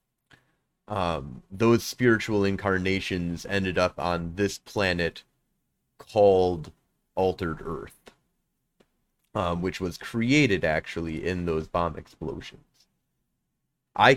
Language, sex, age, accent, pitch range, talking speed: English, male, 30-49, American, 85-100 Hz, 95 wpm